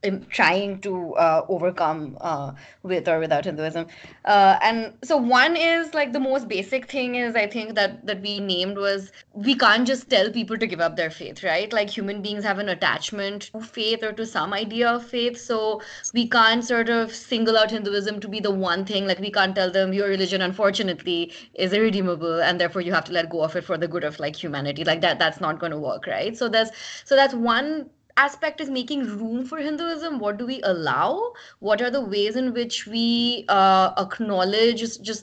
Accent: Indian